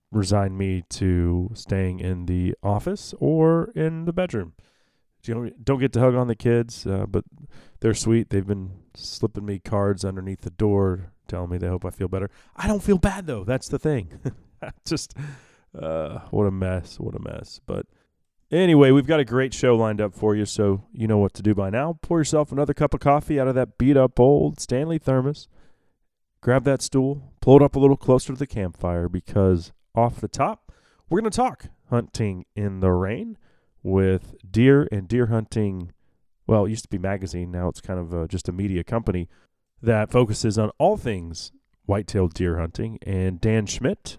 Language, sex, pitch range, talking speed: English, male, 95-130 Hz, 190 wpm